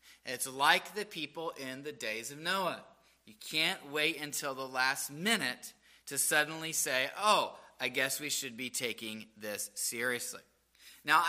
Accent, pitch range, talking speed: American, 130-205 Hz, 155 wpm